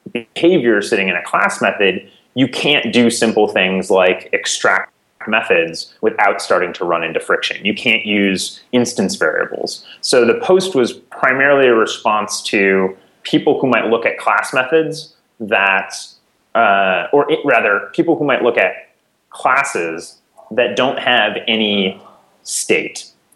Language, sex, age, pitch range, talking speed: English, male, 30-49, 100-130 Hz, 140 wpm